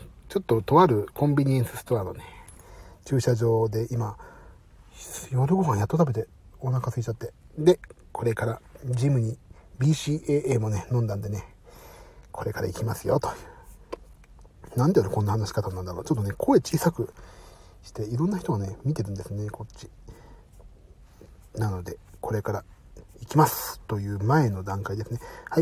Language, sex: Japanese, male